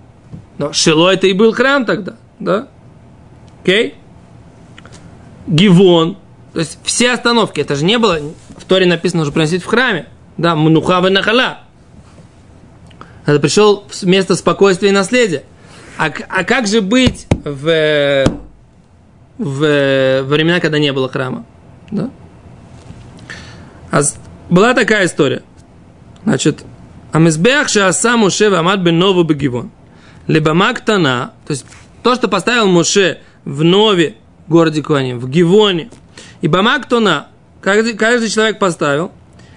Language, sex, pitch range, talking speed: Russian, male, 155-220 Hz, 125 wpm